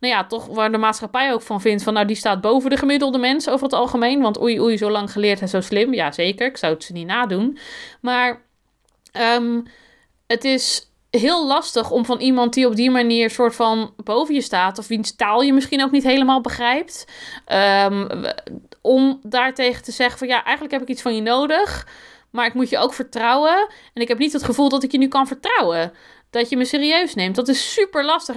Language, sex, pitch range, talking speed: Dutch, female, 220-270 Hz, 220 wpm